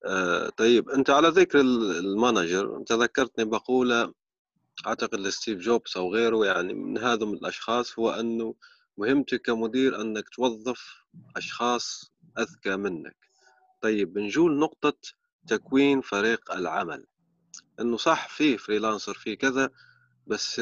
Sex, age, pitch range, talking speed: male, 30-49, 110-130 Hz, 115 wpm